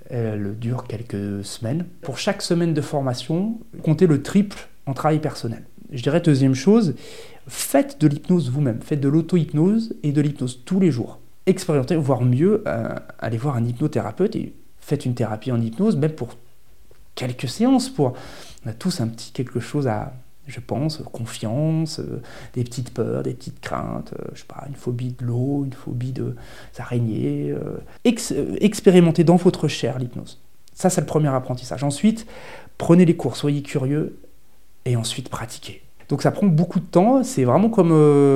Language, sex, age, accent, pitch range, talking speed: French, male, 40-59, French, 125-160 Hz, 175 wpm